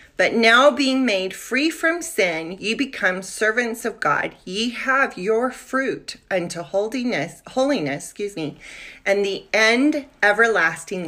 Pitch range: 185-260 Hz